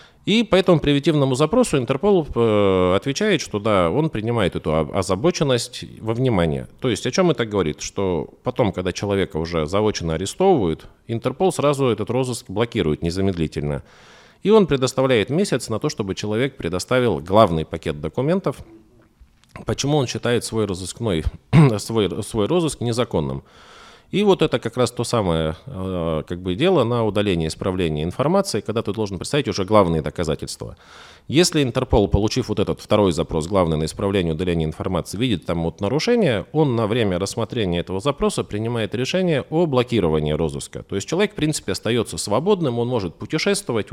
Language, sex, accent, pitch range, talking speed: Russian, male, native, 90-130 Hz, 155 wpm